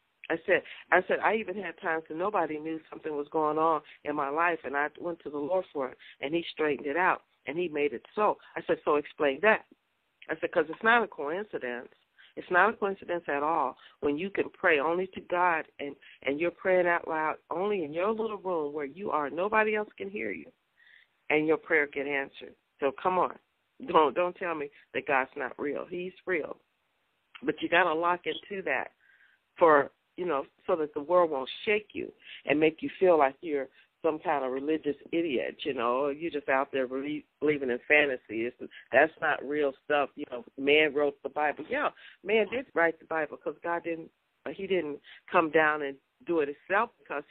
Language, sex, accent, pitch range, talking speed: English, female, American, 145-180 Hz, 205 wpm